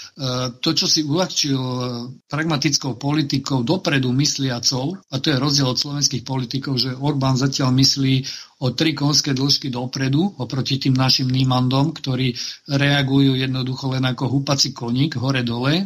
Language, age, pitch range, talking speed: Slovak, 50-69, 125-140 Hz, 135 wpm